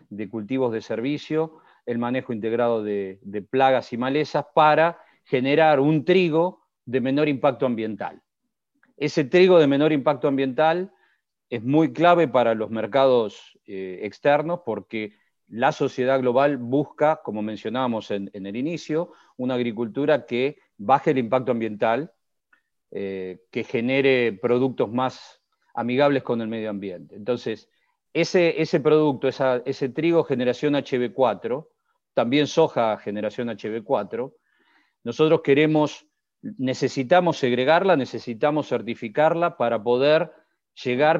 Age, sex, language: 40-59, male, Spanish